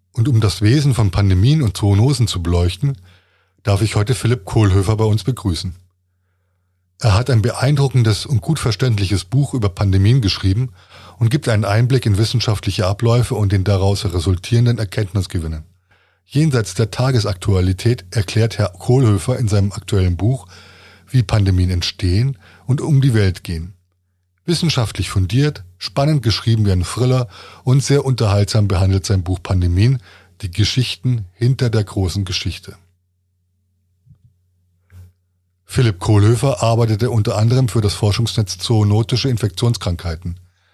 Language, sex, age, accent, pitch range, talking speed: German, male, 20-39, German, 90-120 Hz, 130 wpm